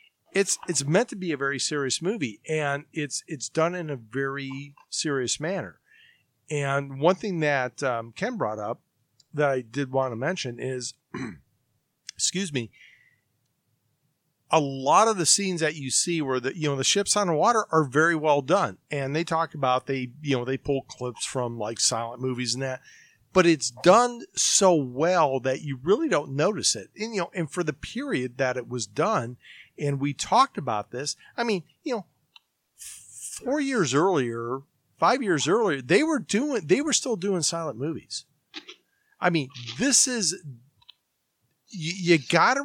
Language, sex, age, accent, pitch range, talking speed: English, male, 40-59, American, 130-175 Hz, 175 wpm